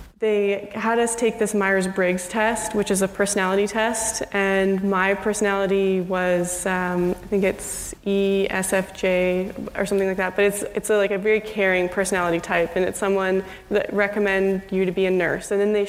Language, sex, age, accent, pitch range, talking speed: English, female, 20-39, American, 190-205 Hz, 180 wpm